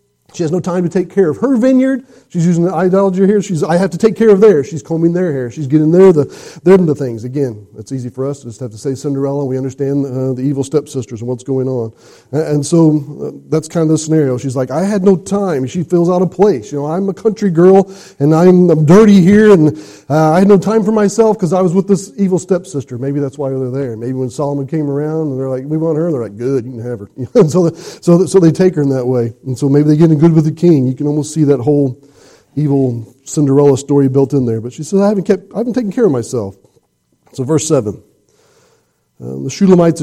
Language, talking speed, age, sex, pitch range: English, 265 wpm, 40-59, male, 135-180 Hz